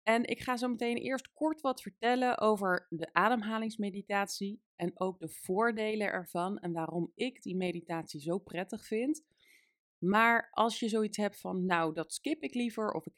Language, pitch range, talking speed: Dutch, 170-235 Hz, 175 wpm